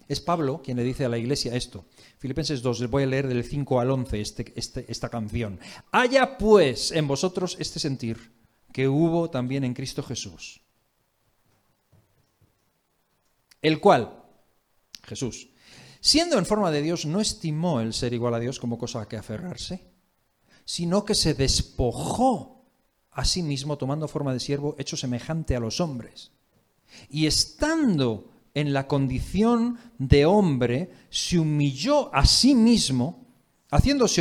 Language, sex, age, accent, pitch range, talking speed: Spanish, male, 40-59, Spanish, 125-200 Hz, 145 wpm